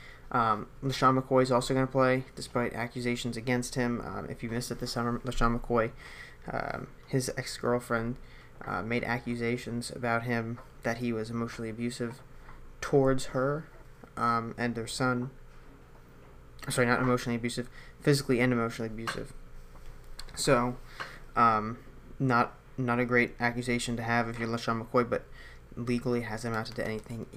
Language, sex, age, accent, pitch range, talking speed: English, male, 20-39, American, 115-130 Hz, 145 wpm